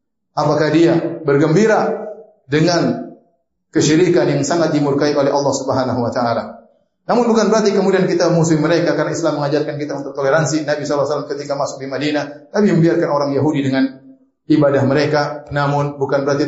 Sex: male